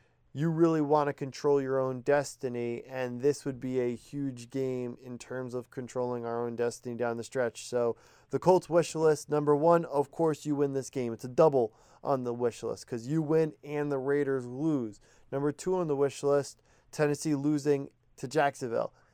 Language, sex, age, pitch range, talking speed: English, male, 20-39, 125-155 Hz, 195 wpm